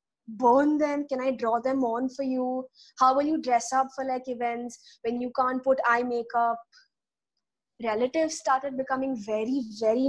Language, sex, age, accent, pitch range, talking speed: English, female, 20-39, Indian, 240-320 Hz, 165 wpm